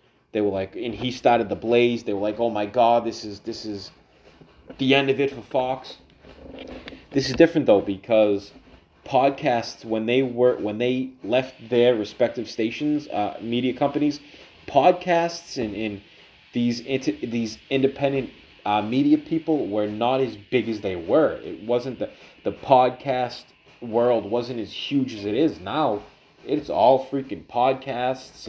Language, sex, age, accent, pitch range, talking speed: English, male, 30-49, American, 115-160 Hz, 160 wpm